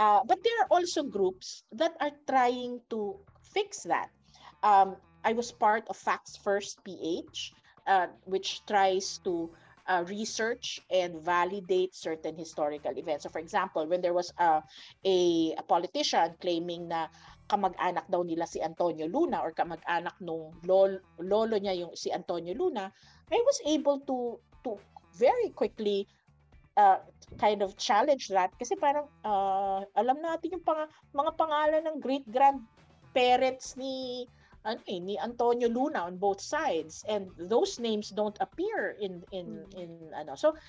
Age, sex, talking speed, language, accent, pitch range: 50-69, female, 150 wpm, Filipino, native, 185-290 Hz